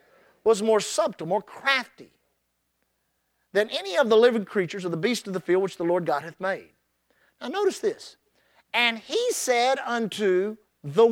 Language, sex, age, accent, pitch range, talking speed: English, male, 50-69, American, 190-275 Hz, 165 wpm